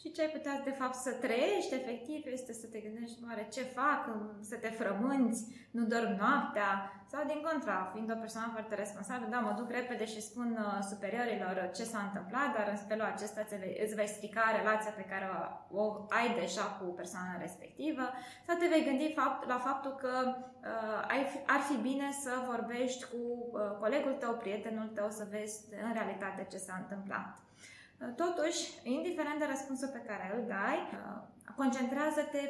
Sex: female